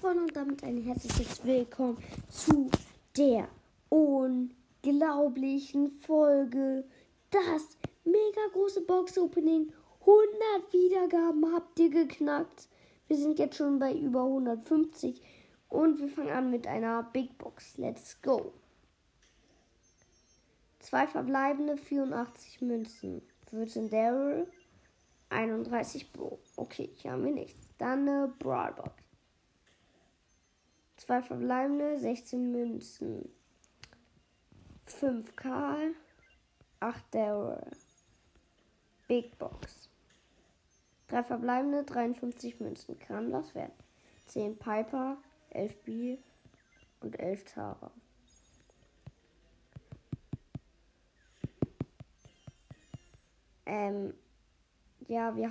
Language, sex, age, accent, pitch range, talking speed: German, female, 20-39, German, 235-310 Hz, 85 wpm